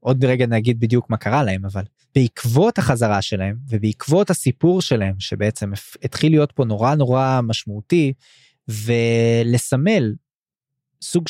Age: 20-39